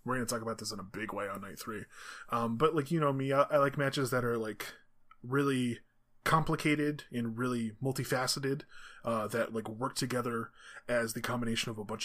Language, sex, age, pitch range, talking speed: English, male, 20-39, 110-135 Hz, 210 wpm